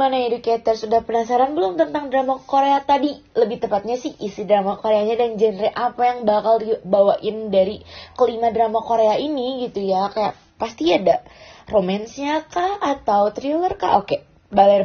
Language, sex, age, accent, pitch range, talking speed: Indonesian, female, 20-39, native, 215-260 Hz, 155 wpm